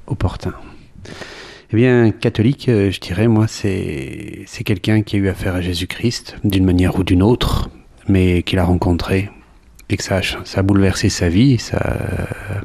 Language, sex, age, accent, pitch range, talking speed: French, male, 40-59, French, 90-110 Hz, 175 wpm